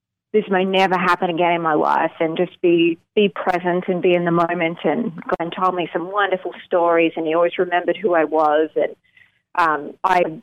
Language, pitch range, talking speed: English, 170-200 Hz, 200 wpm